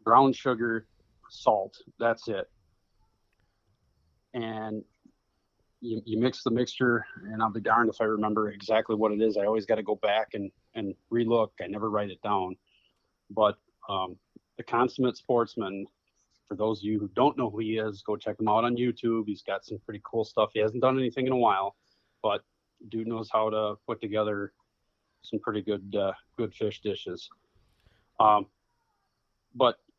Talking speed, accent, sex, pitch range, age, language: 170 wpm, American, male, 105-115 Hz, 30-49, English